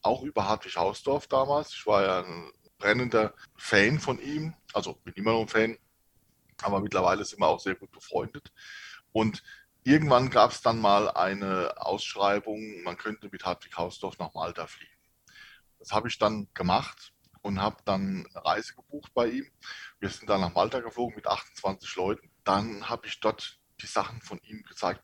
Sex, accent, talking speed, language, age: male, German, 175 wpm, German, 20-39